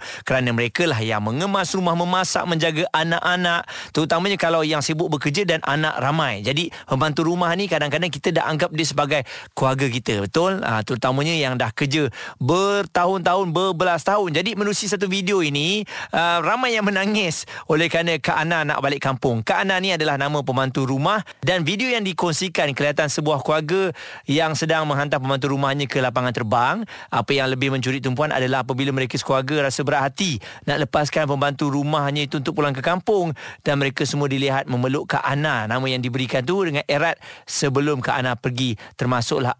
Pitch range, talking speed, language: 135-170 Hz, 175 wpm, Malay